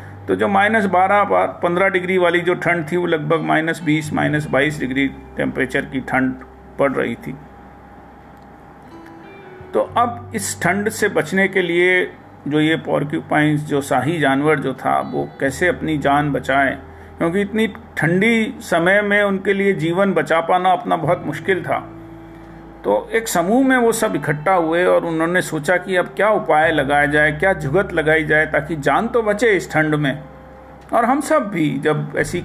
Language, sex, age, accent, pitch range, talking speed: Hindi, male, 50-69, native, 150-200 Hz, 170 wpm